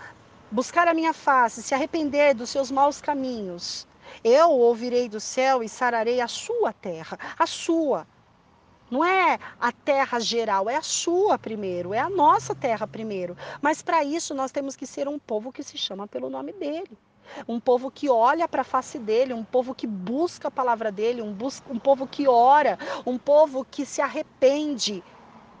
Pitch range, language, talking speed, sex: 220-305 Hz, Portuguese, 175 wpm, female